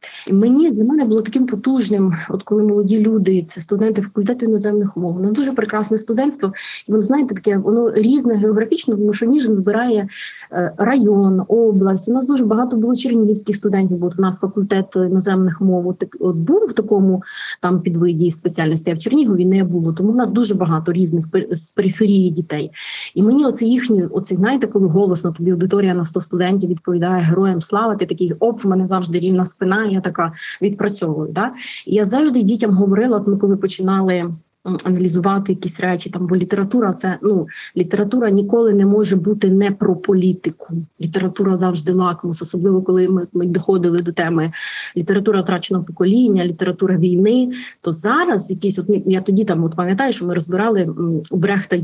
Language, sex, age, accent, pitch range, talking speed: Ukrainian, female, 20-39, native, 180-215 Hz, 170 wpm